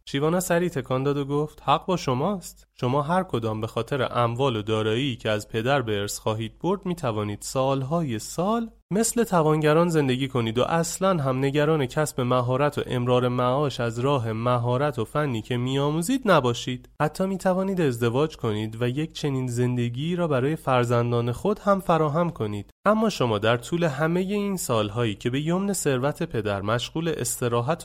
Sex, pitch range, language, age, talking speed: male, 110-150 Hz, Persian, 30-49, 165 wpm